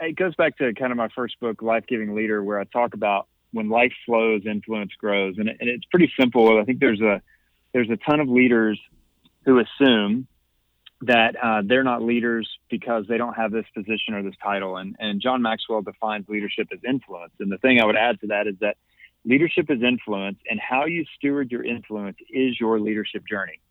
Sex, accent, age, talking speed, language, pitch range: male, American, 30-49, 210 wpm, English, 105-135 Hz